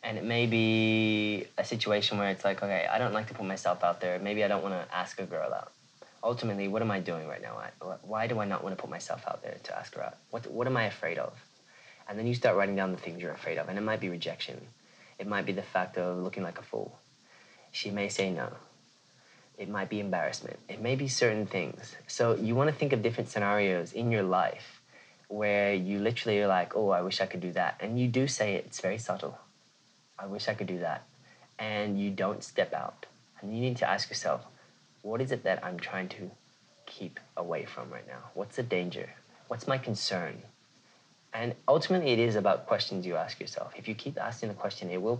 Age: 20-39